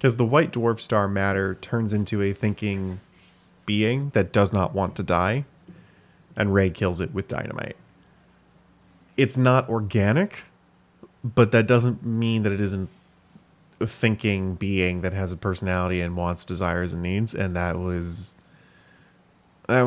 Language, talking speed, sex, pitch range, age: English, 150 wpm, male, 90-115 Hz, 30-49